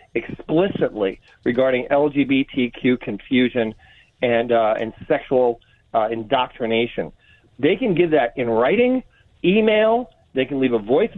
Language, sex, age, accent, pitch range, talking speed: English, male, 40-59, American, 120-155 Hz, 120 wpm